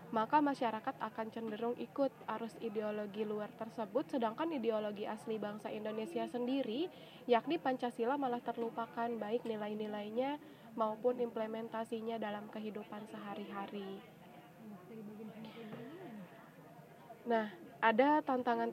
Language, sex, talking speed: Indonesian, female, 95 wpm